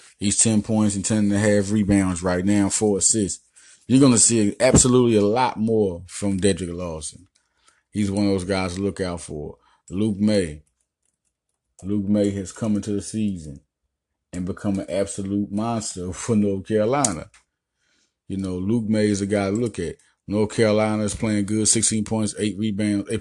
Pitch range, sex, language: 90-110 Hz, male, English